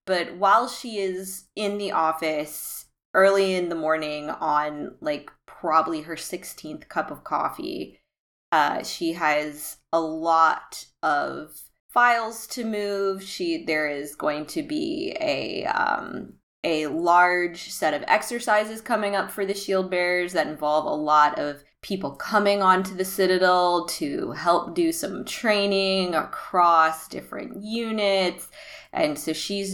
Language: English